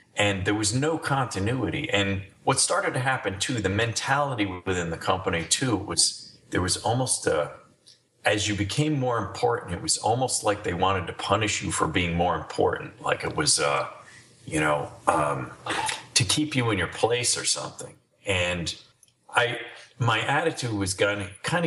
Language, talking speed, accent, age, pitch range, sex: English, 170 wpm, American, 40-59, 95-115 Hz, male